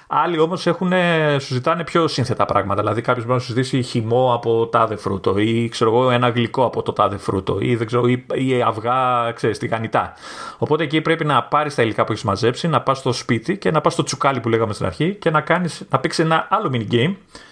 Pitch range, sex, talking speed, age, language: 110-145 Hz, male, 220 wpm, 30-49, Greek